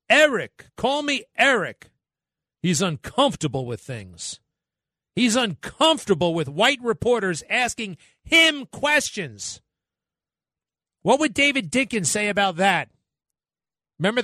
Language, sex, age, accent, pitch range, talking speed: English, male, 50-69, American, 170-255 Hz, 100 wpm